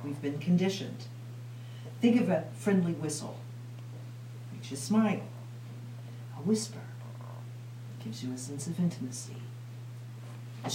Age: 50-69